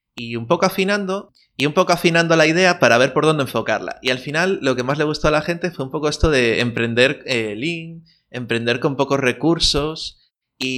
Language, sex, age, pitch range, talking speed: Spanish, male, 20-39, 120-155 Hz, 215 wpm